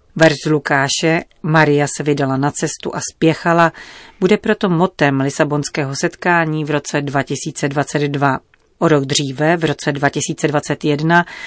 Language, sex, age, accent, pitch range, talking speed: Czech, female, 40-59, native, 145-175 Hz, 120 wpm